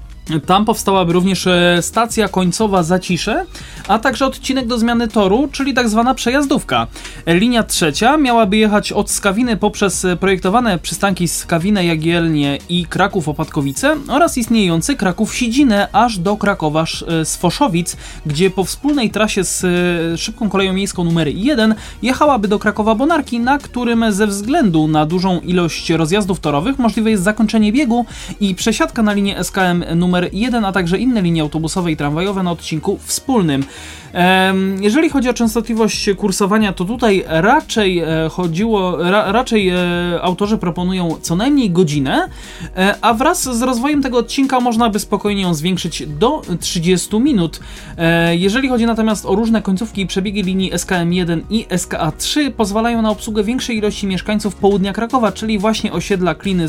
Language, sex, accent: Polish, male, native